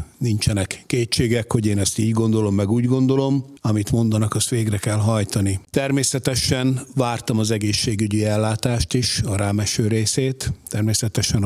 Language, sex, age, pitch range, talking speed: Hungarian, male, 60-79, 105-120 Hz, 135 wpm